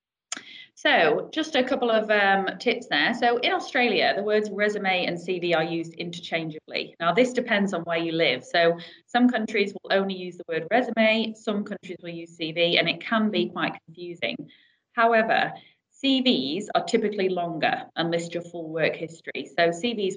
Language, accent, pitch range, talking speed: English, British, 165-225 Hz, 175 wpm